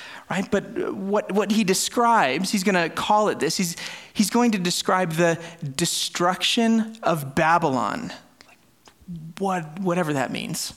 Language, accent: English, American